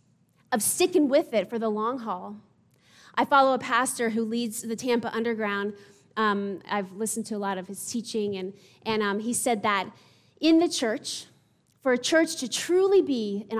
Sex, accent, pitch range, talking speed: female, American, 205-270 Hz, 185 wpm